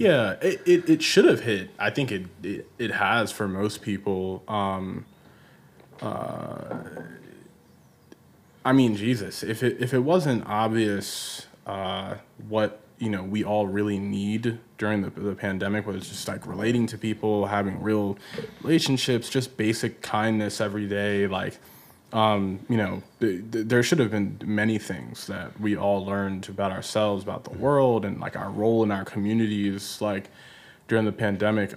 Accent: American